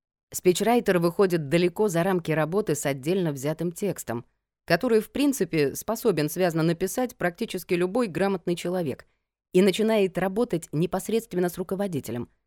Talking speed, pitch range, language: 125 wpm, 135-185 Hz, Russian